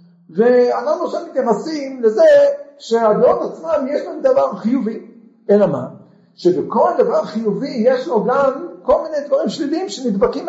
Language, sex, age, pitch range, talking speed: Hebrew, male, 50-69, 190-270 Hz, 130 wpm